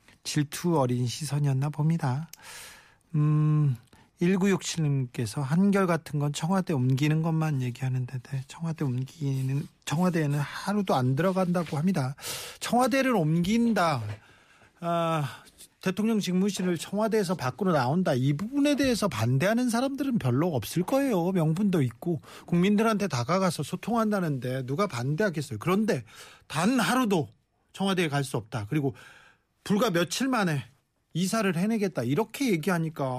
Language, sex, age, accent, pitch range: Korean, male, 40-59, native, 140-200 Hz